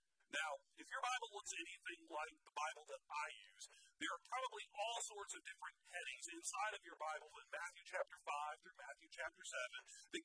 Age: 40-59